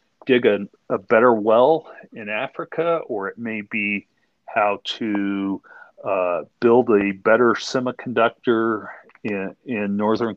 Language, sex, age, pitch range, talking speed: English, male, 40-59, 95-115 Hz, 120 wpm